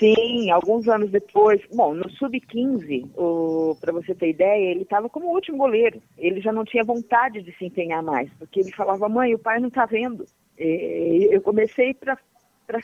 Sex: female